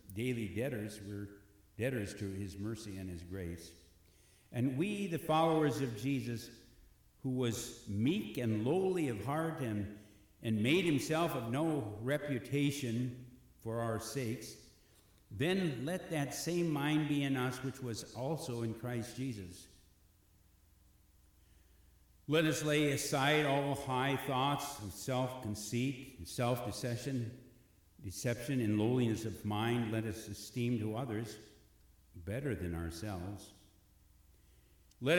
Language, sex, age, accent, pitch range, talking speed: English, male, 60-79, American, 90-125 Hz, 125 wpm